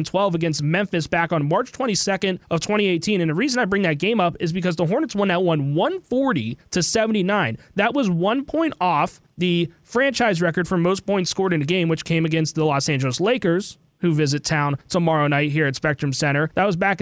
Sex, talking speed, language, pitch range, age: male, 215 wpm, English, 155-195 Hz, 20-39